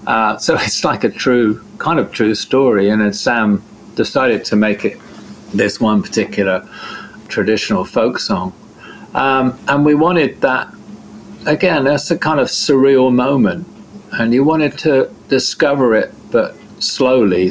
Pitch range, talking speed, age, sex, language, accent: 105-120 Hz, 145 wpm, 50-69, male, English, British